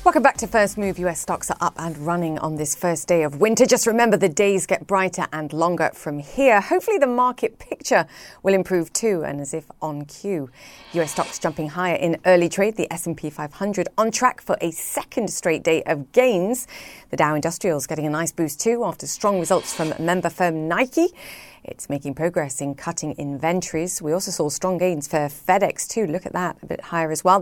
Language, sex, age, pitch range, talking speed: English, female, 30-49, 160-205 Hz, 210 wpm